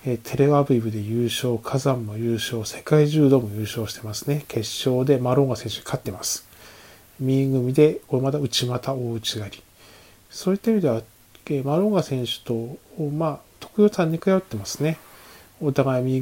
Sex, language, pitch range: male, Japanese, 115-145 Hz